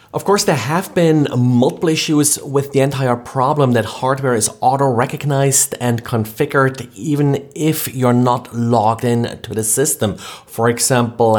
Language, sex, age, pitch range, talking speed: English, male, 30-49, 110-135 Hz, 150 wpm